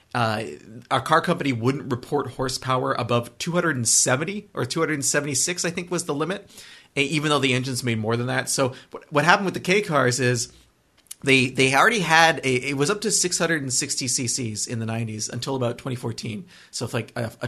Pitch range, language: 125-155 Hz, English